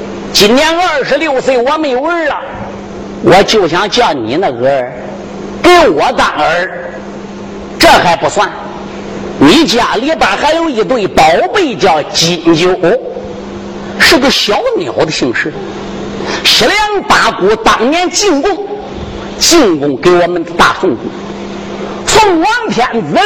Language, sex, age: Chinese, male, 50-69